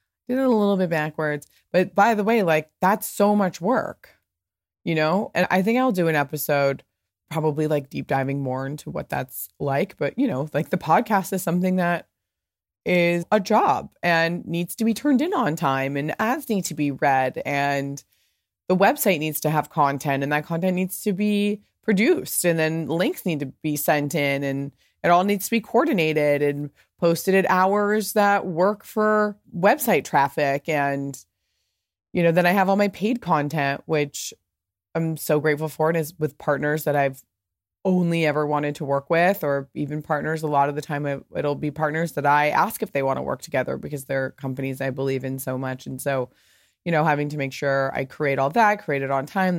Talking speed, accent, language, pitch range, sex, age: 200 wpm, American, English, 140-185 Hz, female, 20-39